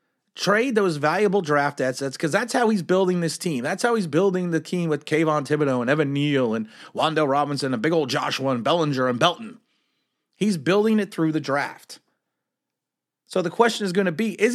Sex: male